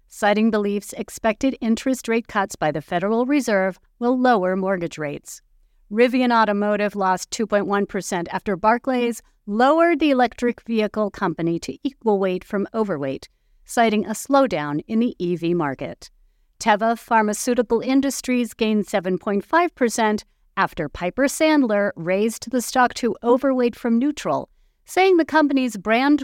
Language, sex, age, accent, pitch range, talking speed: English, female, 50-69, American, 185-250 Hz, 130 wpm